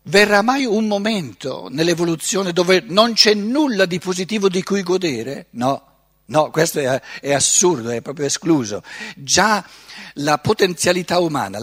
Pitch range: 155-205 Hz